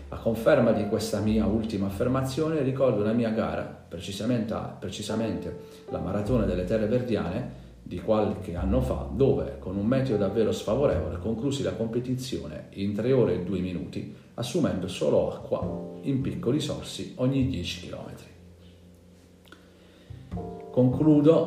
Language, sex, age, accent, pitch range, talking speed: Italian, male, 40-59, native, 90-120 Hz, 130 wpm